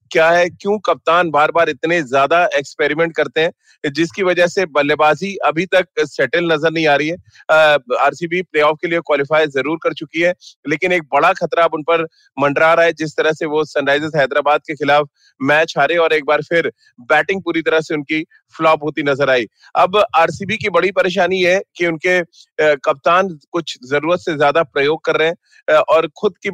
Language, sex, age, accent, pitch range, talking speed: Hindi, male, 30-49, native, 155-180 Hz, 165 wpm